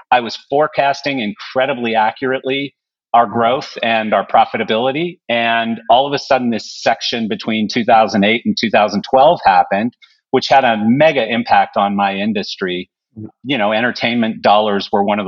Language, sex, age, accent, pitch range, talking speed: English, male, 40-59, American, 105-135 Hz, 145 wpm